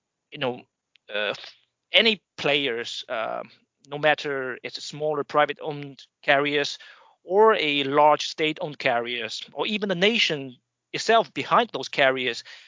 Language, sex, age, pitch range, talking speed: English, male, 30-49, 145-180 Hz, 130 wpm